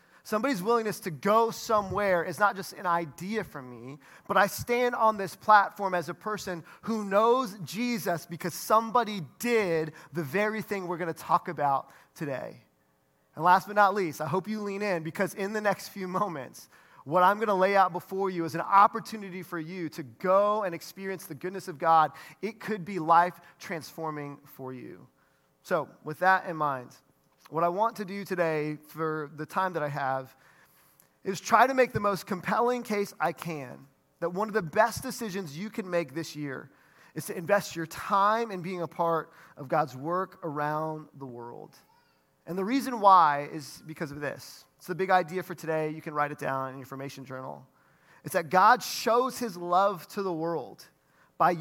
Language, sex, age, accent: English, male, 30-49, American